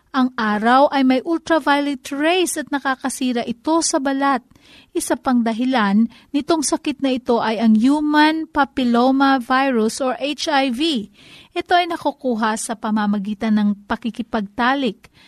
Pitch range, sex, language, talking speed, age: 230-305 Hz, female, Filipino, 125 wpm, 40-59